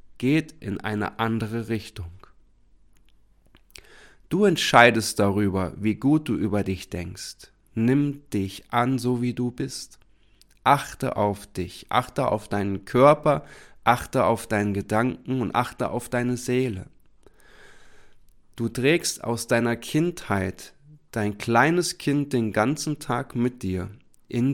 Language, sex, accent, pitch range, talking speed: German, male, German, 105-135 Hz, 125 wpm